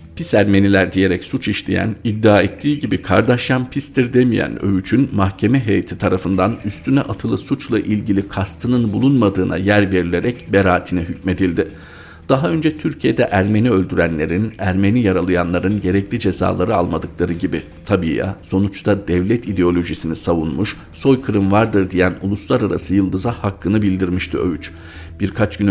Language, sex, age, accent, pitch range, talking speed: Turkish, male, 50-69, native, 90-105 Hz, 120 wpm